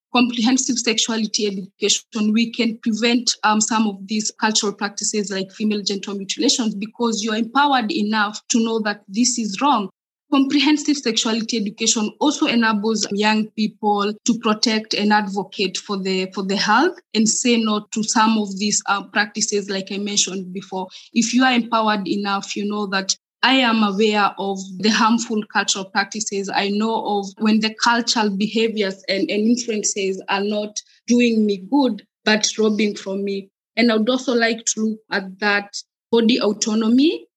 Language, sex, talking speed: English, female, 160 wpm